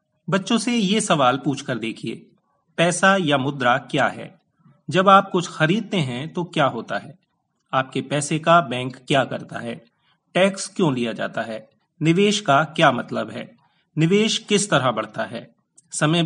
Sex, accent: male, native